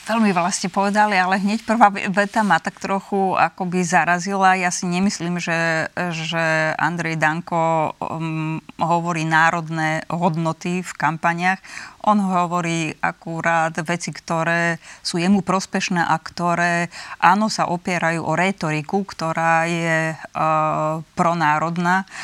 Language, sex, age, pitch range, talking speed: Slovak, female, 20-39, 160-180 Hz, 120 wpm